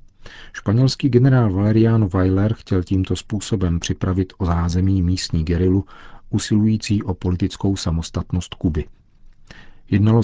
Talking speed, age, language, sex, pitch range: 105 wpm, 40-59, Czech, male, 90-105 Hz